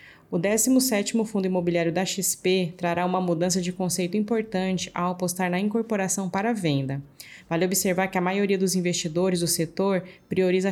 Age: 20-39